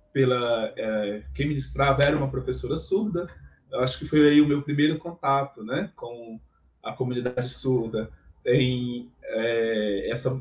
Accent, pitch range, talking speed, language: Brazilian, 130-165 Hz, 145 wpm, Portuguese